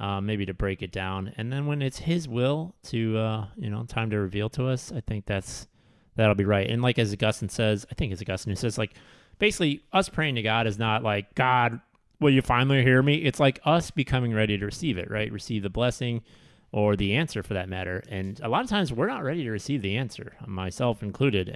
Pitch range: 100-130 Hz